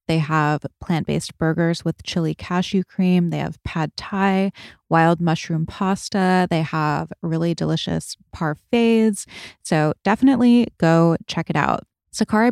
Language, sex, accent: English, female, American